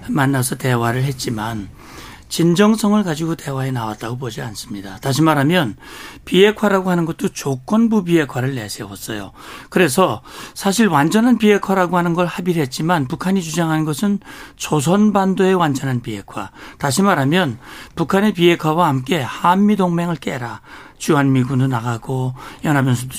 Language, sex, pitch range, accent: Korean, male, 140-200 Hz, native